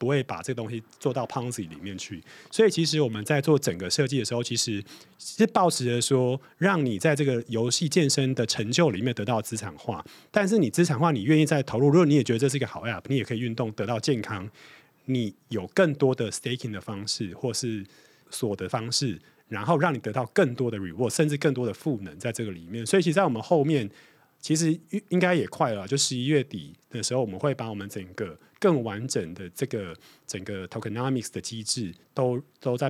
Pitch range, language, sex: 115-150 Hz, Chinese, male